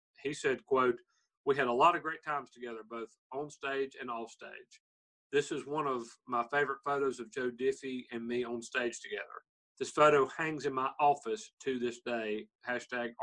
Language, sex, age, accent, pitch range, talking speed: English, male, 40-59, American, 120-160 Hz, 190 wpm